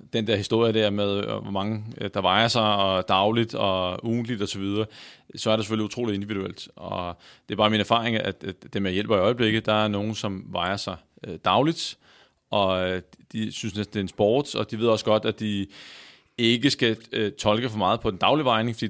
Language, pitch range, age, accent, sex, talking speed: Danish, 95-110 Hz, 30-49, native, male, 205 wpm